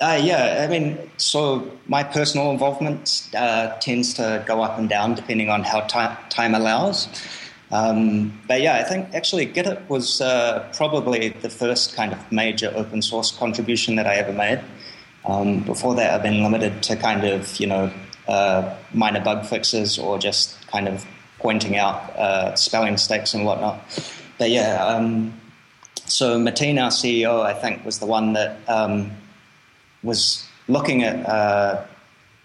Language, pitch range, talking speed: English, 105-120 Hz, 165 wpm